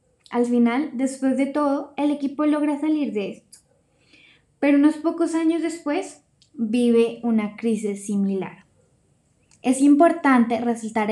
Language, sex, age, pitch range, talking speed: English, female, 10-29, 230-275 Hz, 125 wpm